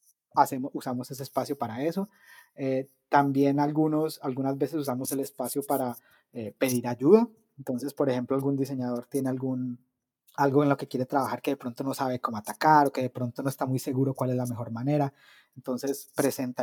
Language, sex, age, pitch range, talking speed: Spanish, male, 30-49, 125-145 Hz, 190 wpm